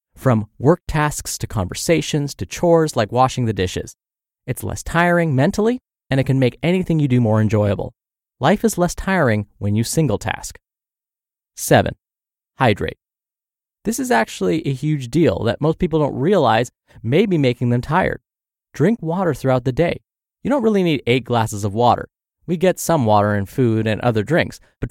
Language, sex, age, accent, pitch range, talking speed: English, male, 20-39, American, 115-165 Hz, 175 wpm